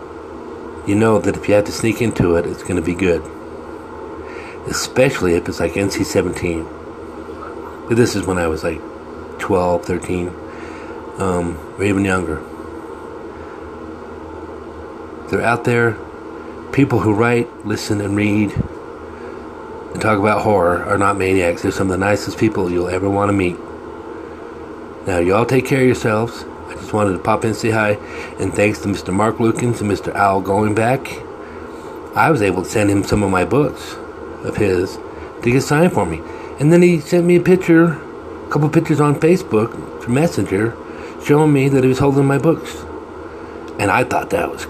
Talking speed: 175 wpm